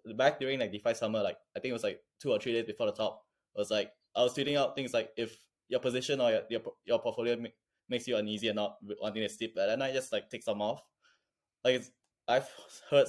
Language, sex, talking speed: English, male, 275 wpm